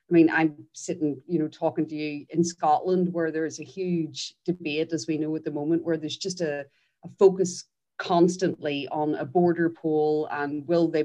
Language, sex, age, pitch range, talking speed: English, female, 30-49, 155-185 Hz, 200 wpm